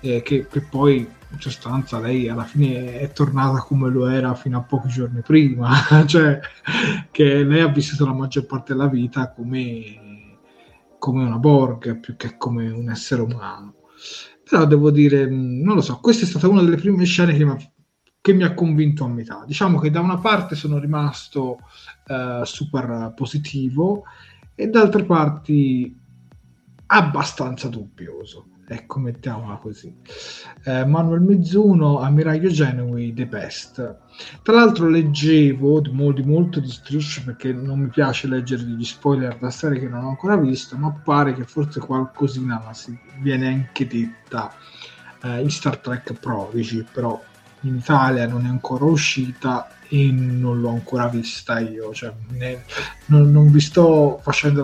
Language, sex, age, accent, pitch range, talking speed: Italian, male, 30-49, native, 120-150 Hz, 155 wpm